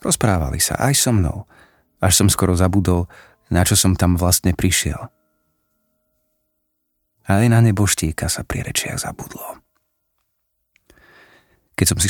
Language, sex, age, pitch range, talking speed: Slovak, male, 40-59, 85-100 Hz, 130 wpm